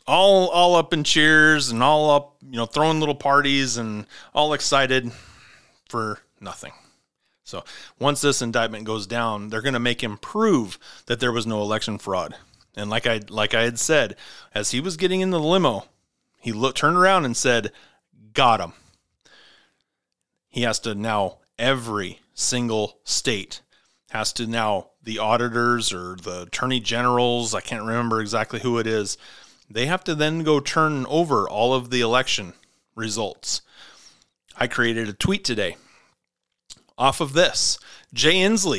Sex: male